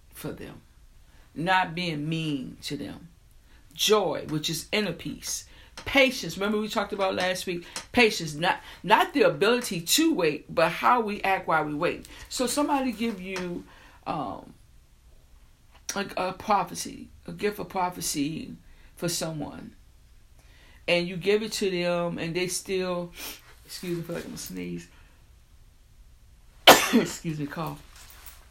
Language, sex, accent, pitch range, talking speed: English, female, American, 170-225 Hz, 135 wpm